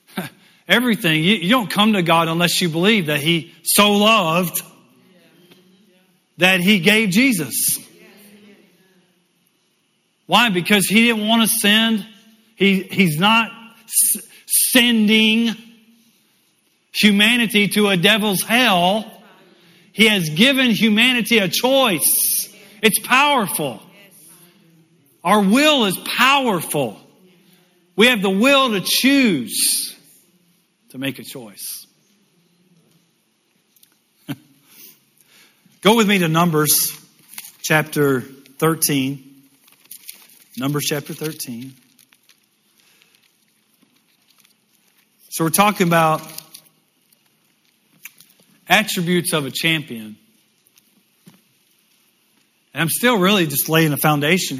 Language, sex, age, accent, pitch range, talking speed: English, male, 40-59, American, 165-215 Hz, 90 wpm